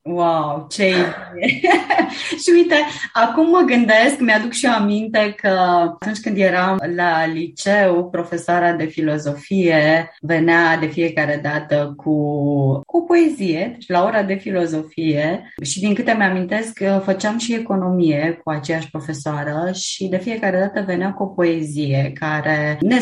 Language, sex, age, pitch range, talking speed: Romanian, female, 20-39, 155-200 Hz, 145 wpm